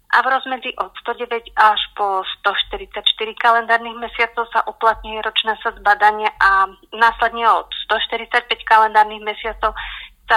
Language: Slovak